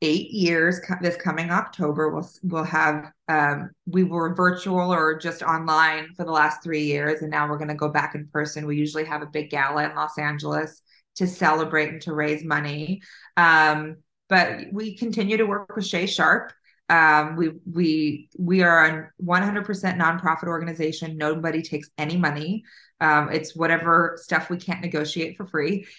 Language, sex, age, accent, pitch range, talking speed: English, female, 20-39, American, 155-175 Hz, 175 wpm